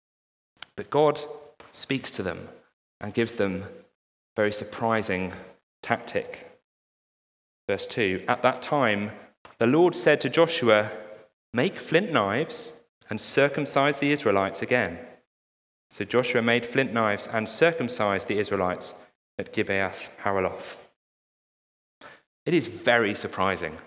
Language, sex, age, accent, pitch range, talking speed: English, male, 30-49, British, 110-165 Hz, 115 wpm